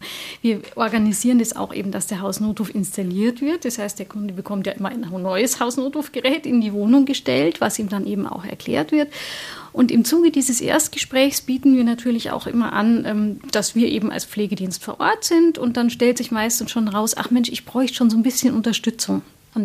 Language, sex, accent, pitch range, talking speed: German, female, German, 205-255 Hz, 205 wpm